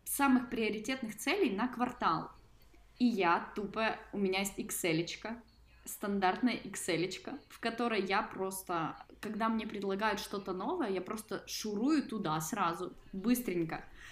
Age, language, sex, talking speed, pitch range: 20-39, Russian, female, 125 wpm, 185-230 Hz